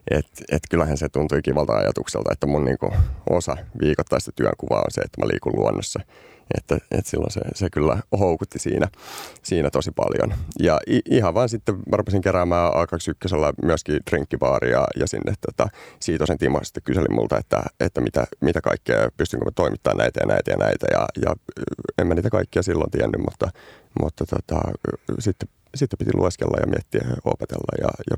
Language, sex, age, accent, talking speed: Finnish, male, 30-49, native, 170 wpm